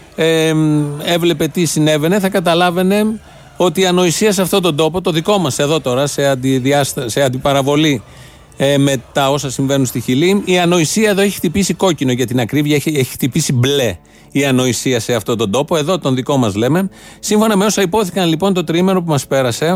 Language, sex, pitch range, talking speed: Greek, male, 135-185 Hz, 190 wpm